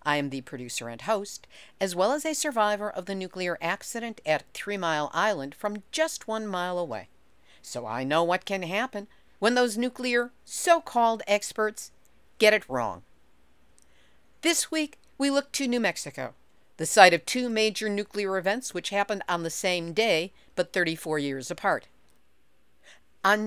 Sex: female